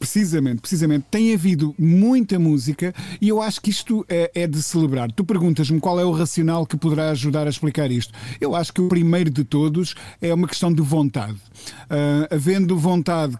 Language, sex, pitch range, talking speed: Portuguese, male, 150-175 Hz, 190 wpm